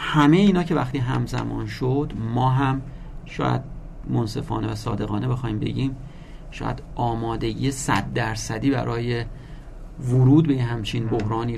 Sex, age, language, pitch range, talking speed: male, 40-59, Persian, 115-150 Hz, 125 wpm